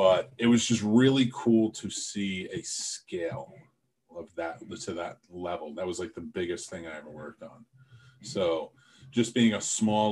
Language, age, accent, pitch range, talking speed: English, 30-49, American, 95-120 Hz, 180 wpm